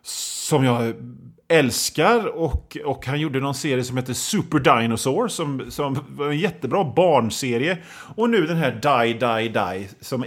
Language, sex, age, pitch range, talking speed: Swedish, male, 30-49, 115-160 Hz, 165 wpm